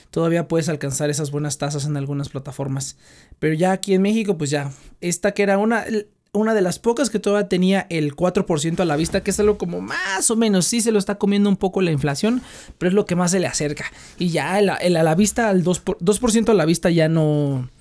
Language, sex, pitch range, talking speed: Spanish, male, 150-200 Hz, 225 wpm